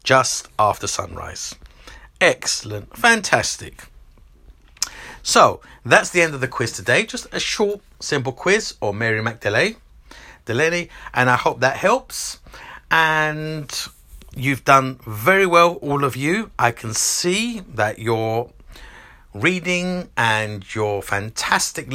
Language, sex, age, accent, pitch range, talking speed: English, male, 50-69, British, 105-145 Hz, 120 wpm